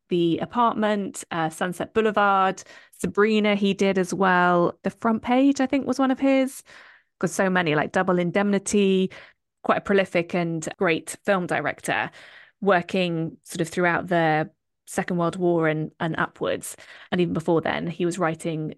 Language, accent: English, British